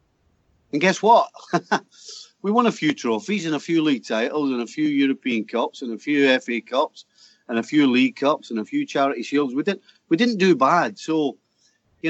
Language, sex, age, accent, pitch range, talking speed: English, male, 40-59, British, 115-175 Hz, 205 wpm